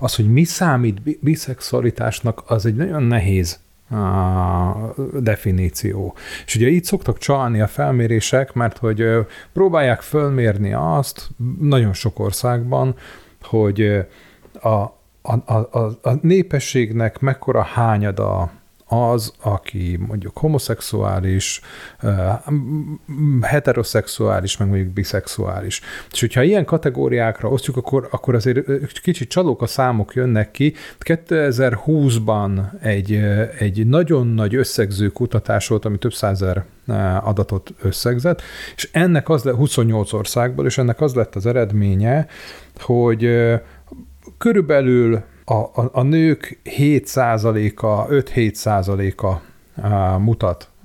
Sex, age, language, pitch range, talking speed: male, 30-49, Hungarian, 105-135 Hz, 105 wpm